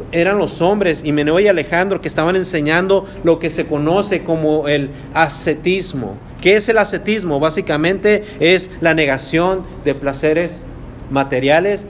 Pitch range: 135-175 Hz